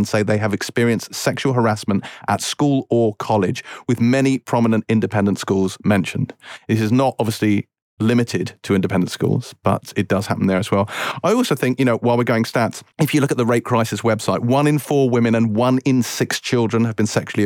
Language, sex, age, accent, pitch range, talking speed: English, male, 40-59, British, 110-130 Hz, 205 wpm